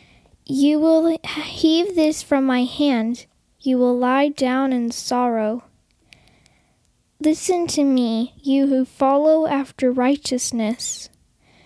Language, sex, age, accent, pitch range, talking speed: English, female, 10-29, American, 245-290 Hz, 110 wpm